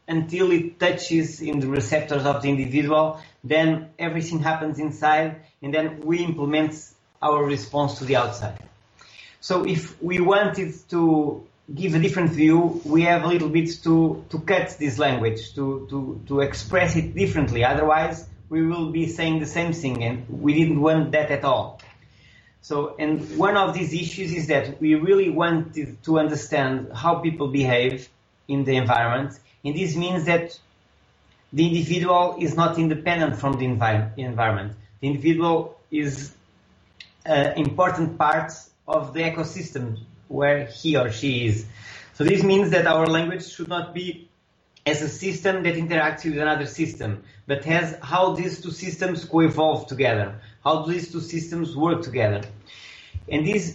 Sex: male